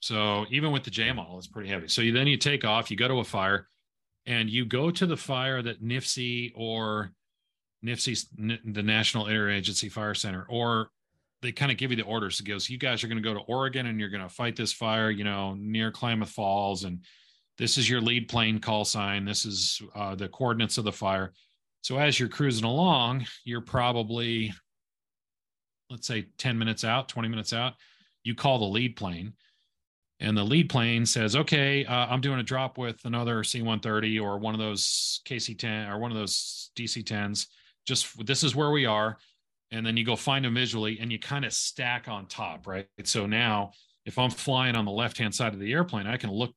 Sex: male